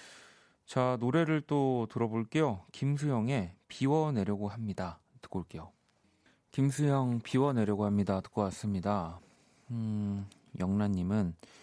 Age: 30-49